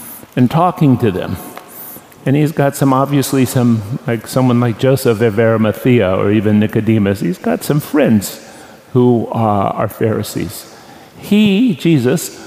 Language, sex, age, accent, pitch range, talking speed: English, male, 50-69, American, 110-140 Hz, 140 wpm